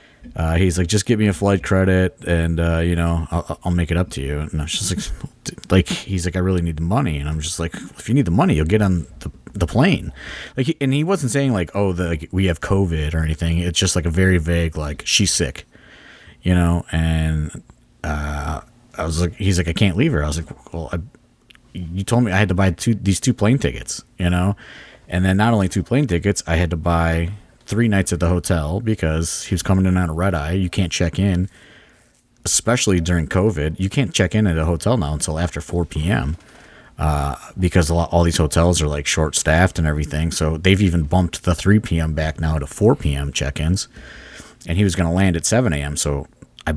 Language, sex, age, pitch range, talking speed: English, male, 30-49, 80-95 Hz, 235 wpm